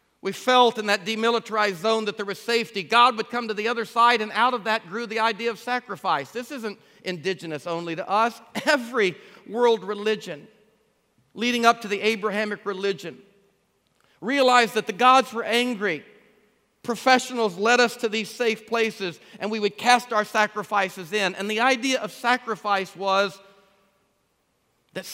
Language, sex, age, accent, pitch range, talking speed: English, male, 50-69, American, 190-230 Hz, 160 wpm